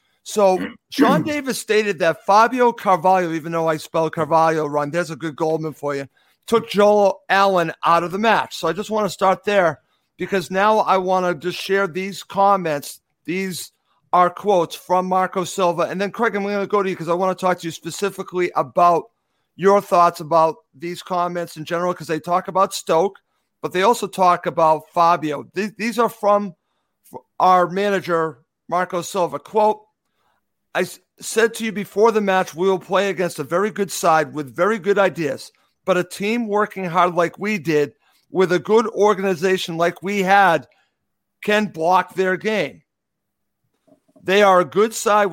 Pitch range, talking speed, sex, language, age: 170-205 Hz, 180 wpm, male, English, 50-69